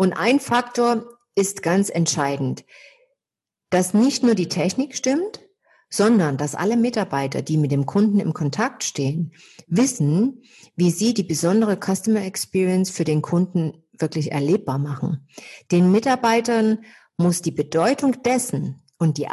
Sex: female